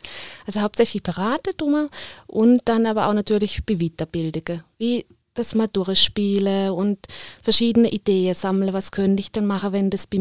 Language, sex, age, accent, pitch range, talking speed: German, female, 20-39, German, 190-225 Hz, 160 wpm